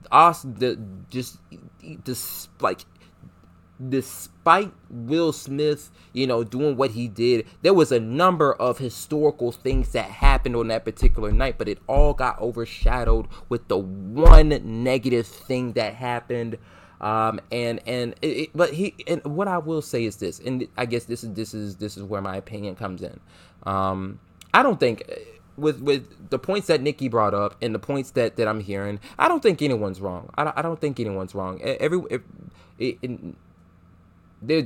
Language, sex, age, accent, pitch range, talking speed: English, male, 20-39, American, 95-130 Hz, 170 wpm